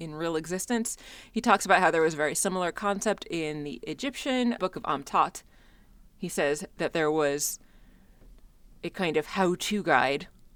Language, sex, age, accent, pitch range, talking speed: English, female, 30-49, American, 150-205 Hz, 165 wpm